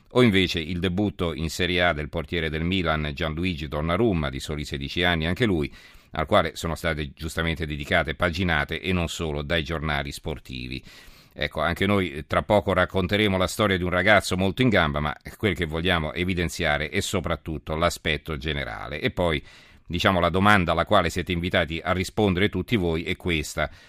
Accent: native